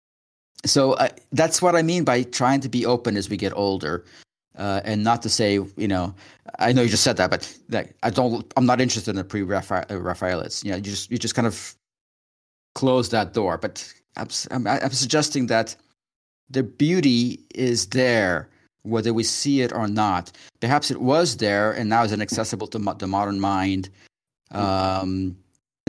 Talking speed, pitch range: 185 wpm, 100-130 Hz